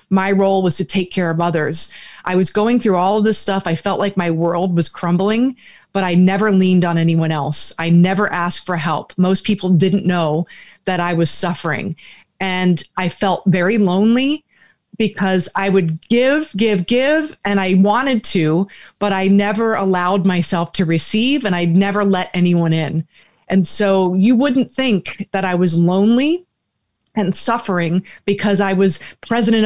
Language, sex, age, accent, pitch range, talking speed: English, female, 30-49, American, 180-215 Hz, 175 wpm